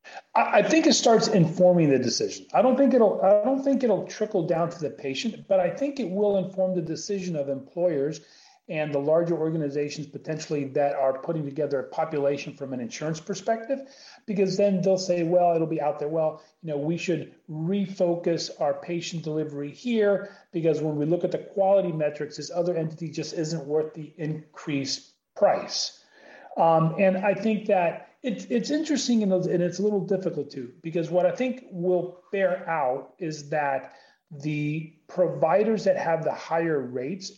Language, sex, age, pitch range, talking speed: English, male, 40-59, 155-190 Hz, 180 wpm